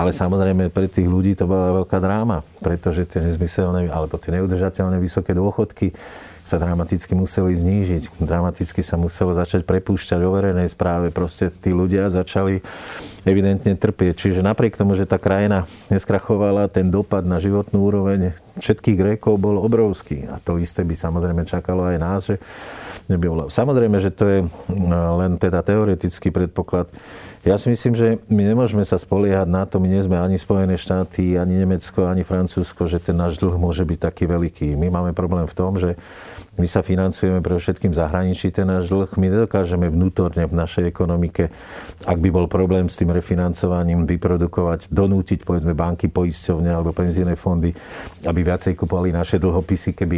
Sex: male